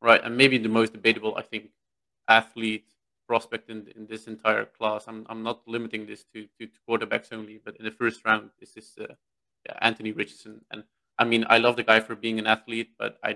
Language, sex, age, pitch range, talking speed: Dutch, male, 20-39, 110-120 Hz, 220 wpm